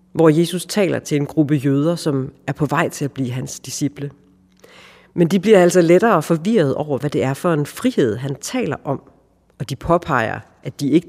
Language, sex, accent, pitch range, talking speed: Danish, female, native, 125-160 Hz, 205 wpm